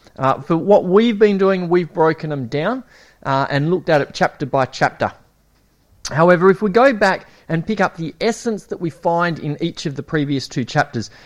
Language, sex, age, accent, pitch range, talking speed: English, male, 30-49, Australian, 145-200 Hz, 205 wpm